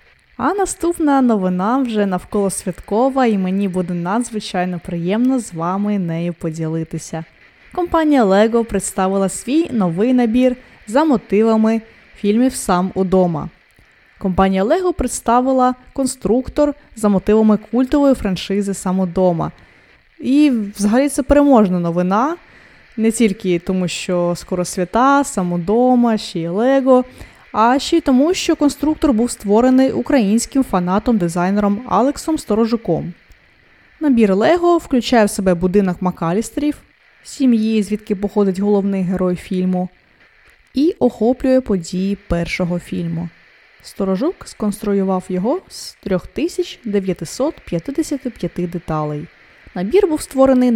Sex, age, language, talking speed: female, 20-39, Ukrainian, 110 wpm